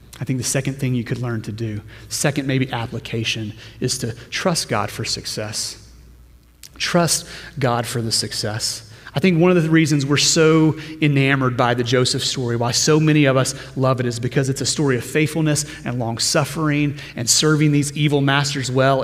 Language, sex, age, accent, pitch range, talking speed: English, male, 30-49, American, 120-155 Hz, 190 wpm